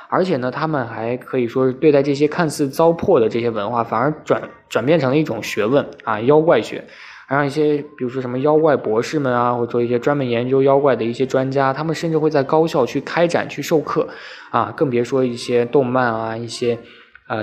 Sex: male